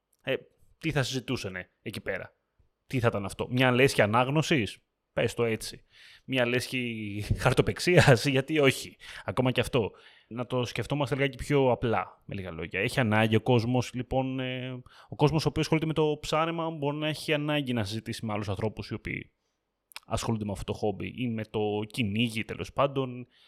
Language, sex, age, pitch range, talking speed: Greek, male, 20-39, 110-145 Hz, 175 wpm